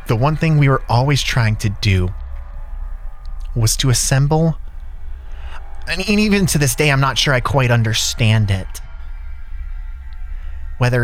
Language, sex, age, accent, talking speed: English, male, 30-49, American, 145 wpm